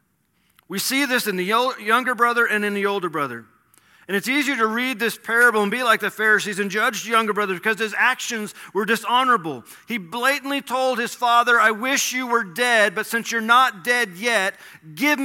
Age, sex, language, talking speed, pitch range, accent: 40-59, male, English, 200 wpm, 165-235 Hz, American